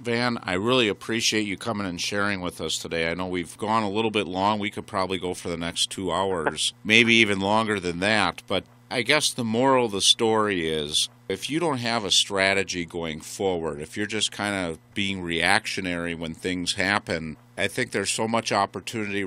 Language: English